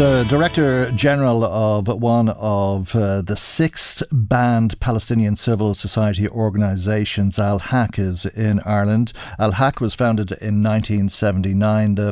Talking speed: 130 wpm